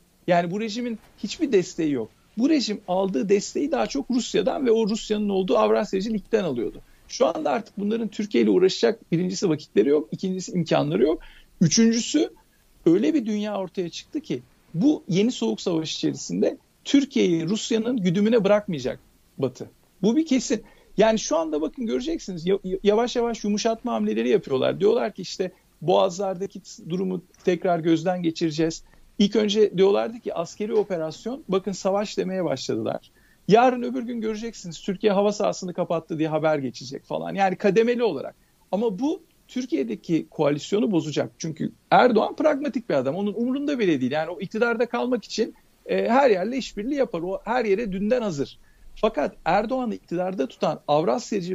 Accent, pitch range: native, 180-235 Hz